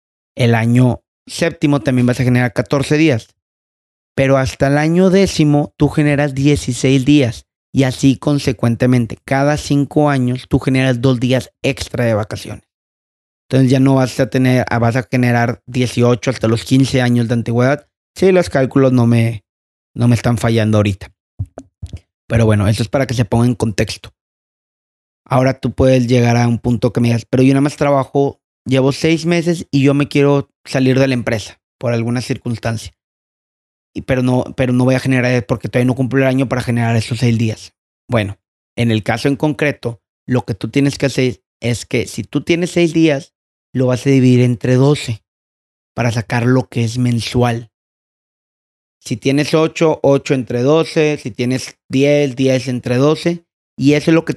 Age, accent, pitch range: 30-49, Mexican, 115-140 Hz